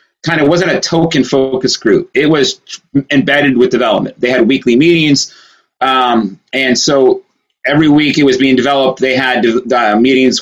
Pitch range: 125-150 Hz